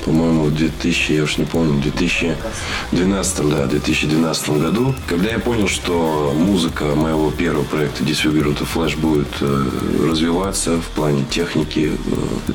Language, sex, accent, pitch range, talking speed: Russian, male, native, 70-80 Hz, 135 wpm